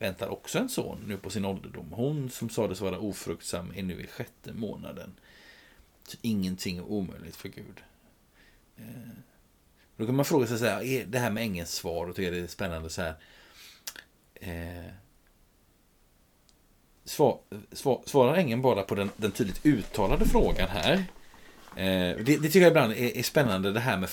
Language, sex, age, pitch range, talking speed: Swedish, male, 30-49, 95-125 Hz, 175 wpm